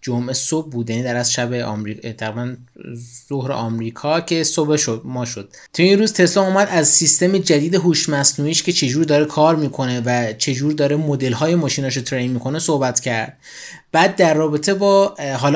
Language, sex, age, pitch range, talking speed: Persian, male, 20-39, 135-165 Hz, 170 wpm